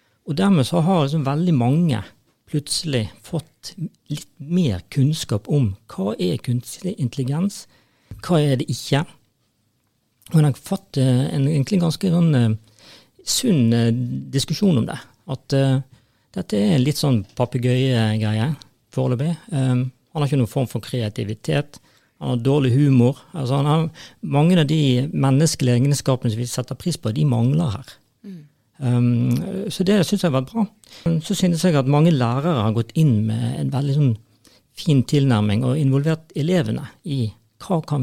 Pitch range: 120-155 Hz